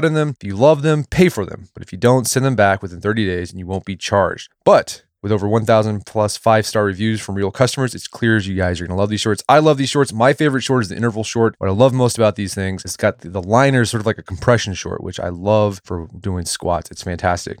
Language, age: English, 20-39